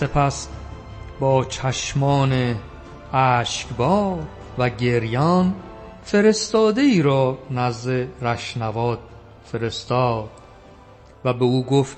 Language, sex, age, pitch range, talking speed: Persian, male, 50-69, 120-165 Hz, 80 wpm